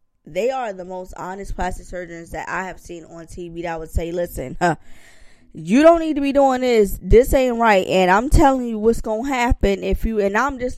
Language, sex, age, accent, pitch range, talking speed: English, female, 20-39, American, 170-245 Hz, 225 wpm